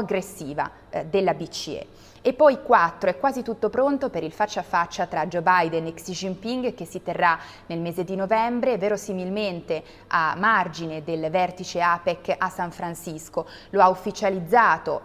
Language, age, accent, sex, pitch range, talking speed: Italian, 20-39, native, female, 170-205 Hz, 160 wpm